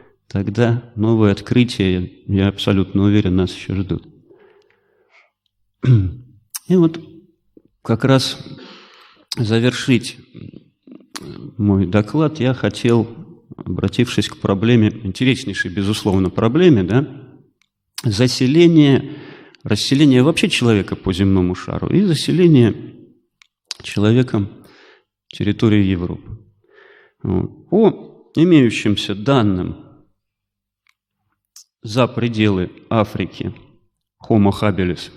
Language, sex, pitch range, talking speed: Russian, male, 100-130 Hz, 75 wpm